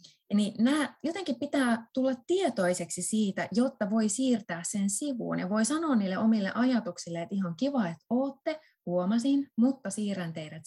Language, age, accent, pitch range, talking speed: Finnish, 20-39, native, 175-240 Hz, 150 wpm